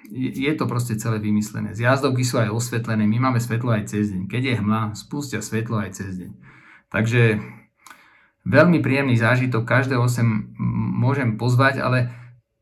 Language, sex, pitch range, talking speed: Slovak, male, 110-125 Hz, 150 wpm